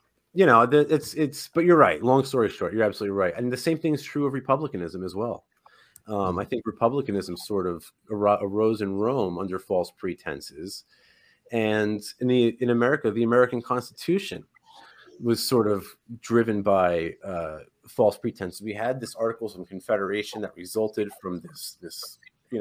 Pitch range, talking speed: 105-125 Hz, 165 wpm